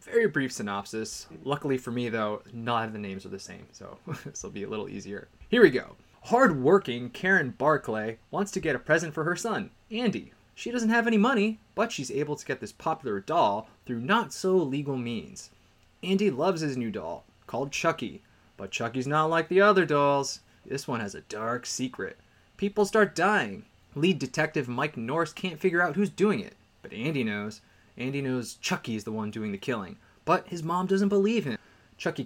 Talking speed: 190 wpm